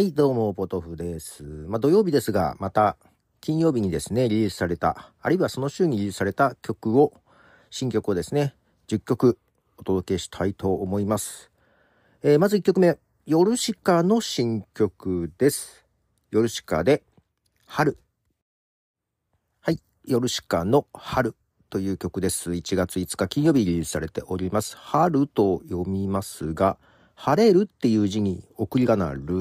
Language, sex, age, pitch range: Japanese, male, 40-59, 90-140 Hz